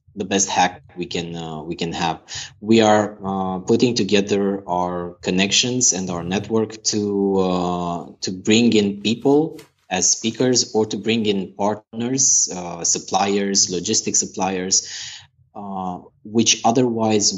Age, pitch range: 20-39, 90-110 Hz